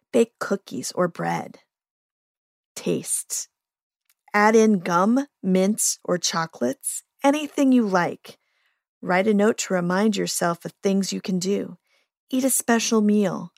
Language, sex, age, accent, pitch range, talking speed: English, female, 40-59, American, 180-230 Hz, 130 wpm